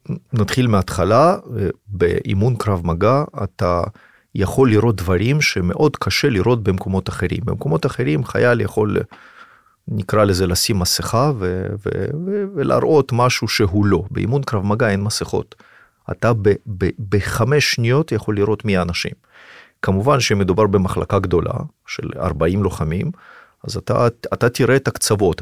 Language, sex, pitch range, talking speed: Hebrew, male, 95-120 Hz, 130 wpm